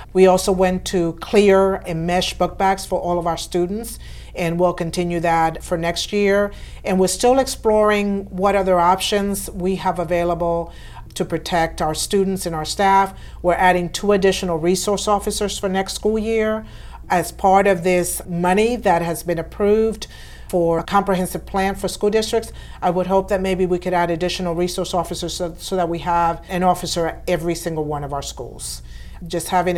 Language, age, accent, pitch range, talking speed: English, 50-69, American, 170-205 Hz, 185 wpm